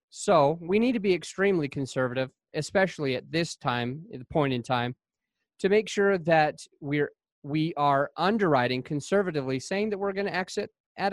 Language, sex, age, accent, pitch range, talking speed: English, male, 30-49, American, 130-180 Hz, 160 wpm